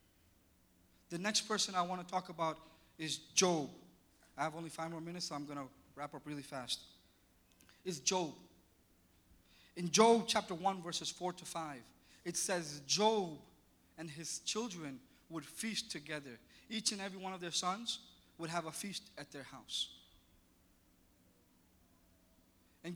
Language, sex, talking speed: English, male, 150 wpm